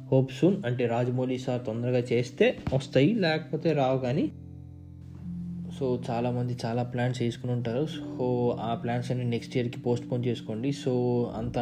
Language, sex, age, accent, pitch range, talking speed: Telugu, male, 20-39, native, 120-130 Hz, 145 wpm